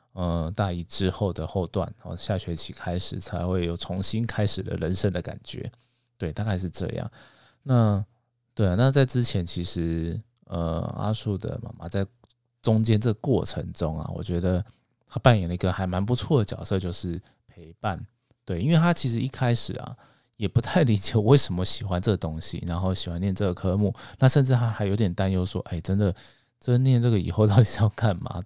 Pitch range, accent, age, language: 90-120 Hz, native, 20-39, Chinese